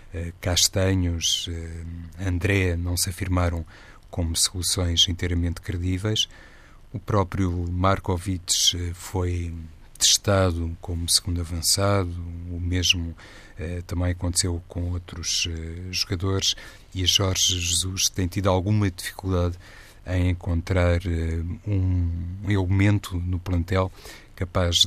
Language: Portuguese